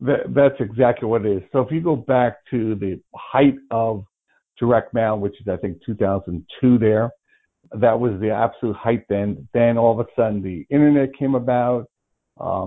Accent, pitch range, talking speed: American, 115-145 Hz, 180 wpm